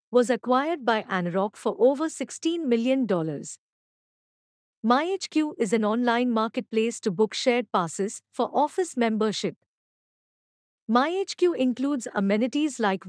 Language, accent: English, Indian